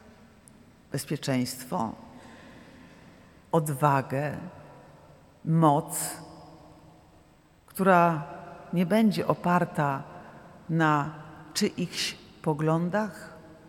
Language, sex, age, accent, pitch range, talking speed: Polish, female, 50-69, native, 165-220 Hz, 45 wpm